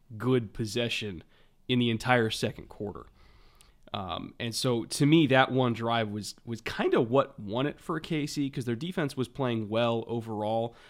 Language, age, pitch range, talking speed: English, 20-39, 115-130 Hz, 170 wpm